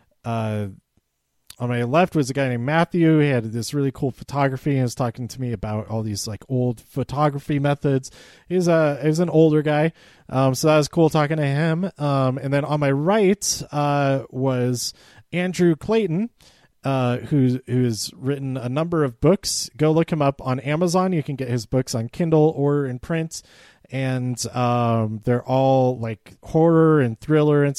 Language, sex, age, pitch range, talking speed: English, male, 30-49, 120-150 Hz, 180 wpm